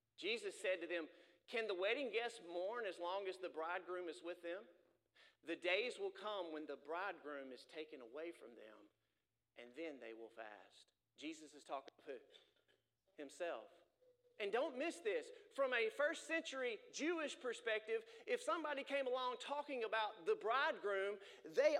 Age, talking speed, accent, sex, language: 40-59, 160 wpm, American, male, English